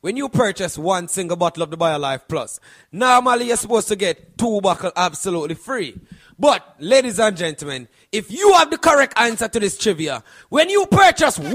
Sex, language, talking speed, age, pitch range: male, English, 180 wpm, 30-49, 165-225 Hz